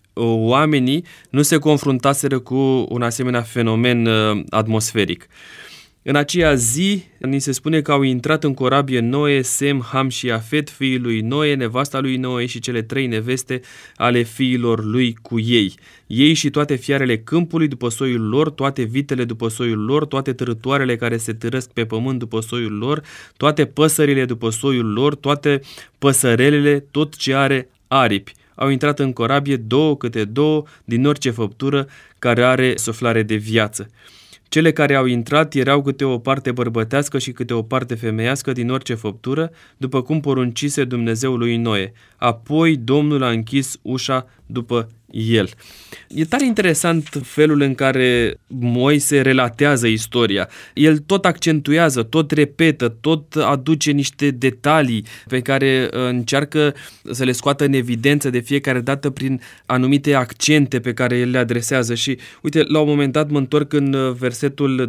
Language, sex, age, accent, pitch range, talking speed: Romanian, male, 20-39, native, 120-145 Hz, 155 wpm